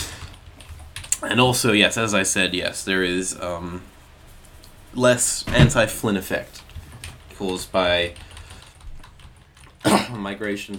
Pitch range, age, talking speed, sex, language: 85-100 Hz, 20-39, 90 wpm, male, English